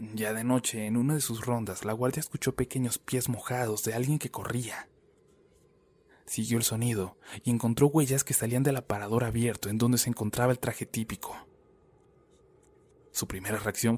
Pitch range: 110-130 Hz